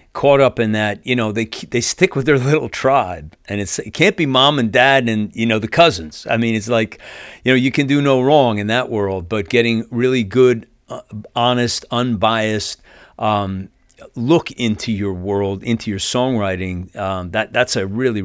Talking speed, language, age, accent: 195 wpm, English, 40-59, American